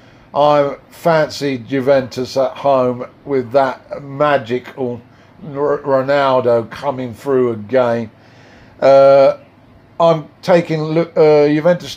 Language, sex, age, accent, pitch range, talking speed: English, male, 50-69, British, 125-145 Hz, 85 wpm